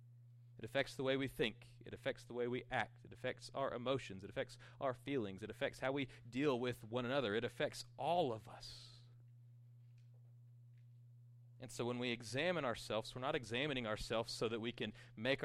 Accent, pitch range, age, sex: American, 120-130 Hz, 30-49, male